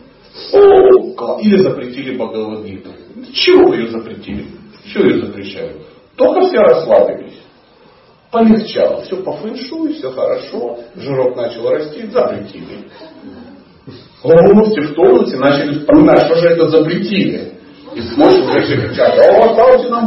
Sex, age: male, 40-59